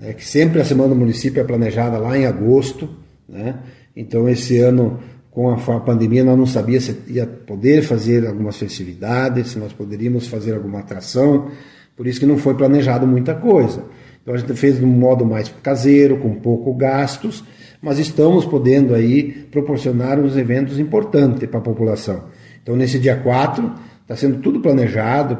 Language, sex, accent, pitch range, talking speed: Portuguese, male, Brazilian, 115-140 Hz, 170 wpm